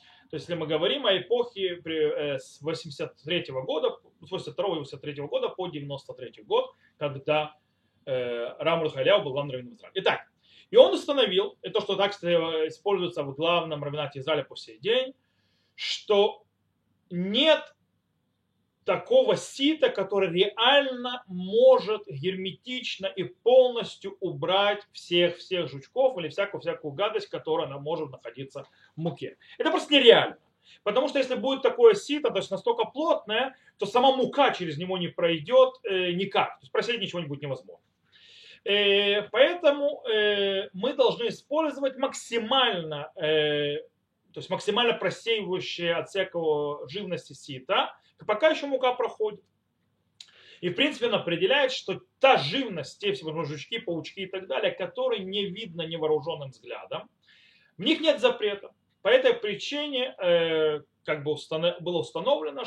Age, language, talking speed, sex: 30-49, Russian, 135 wpm, male